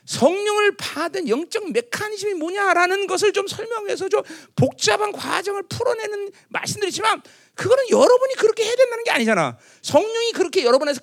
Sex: male